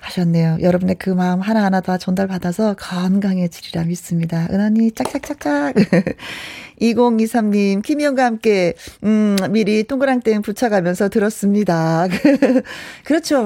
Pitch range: 190-260 Hz